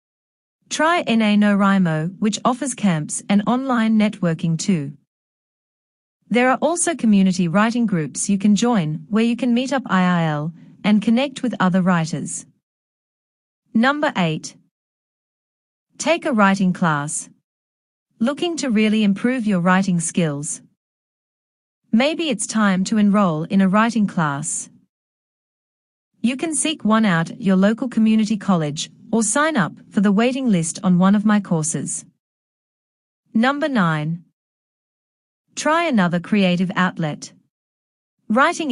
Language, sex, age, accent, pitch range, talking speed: English, female, 40-59, Australian, 180-235 Hz, 125 wpm